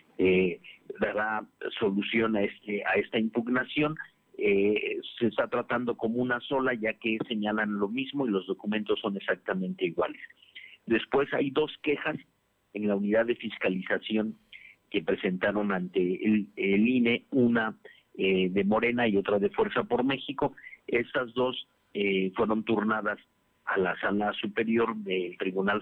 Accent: Mexican